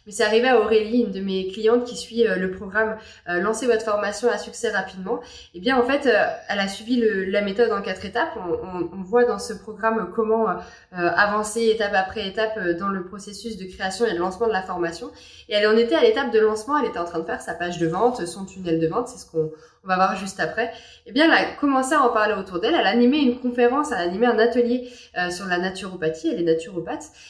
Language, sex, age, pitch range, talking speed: French, female, 20-39, 195-255 Hz, 250 wpm